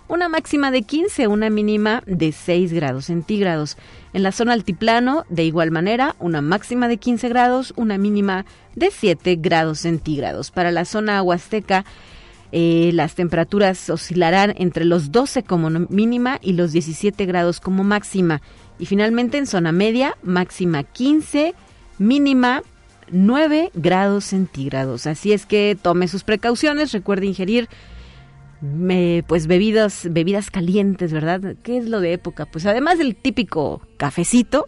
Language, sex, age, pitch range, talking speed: Spanish, female, 40-59, 165-215 Hz, 145 wpm